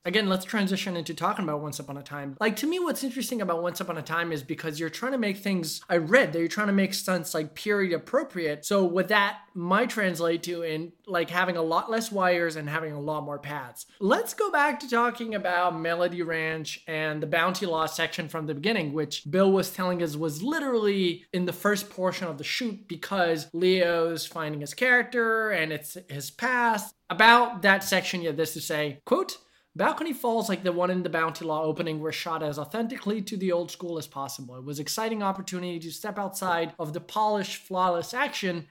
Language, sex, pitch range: English, male, 160-210 Hz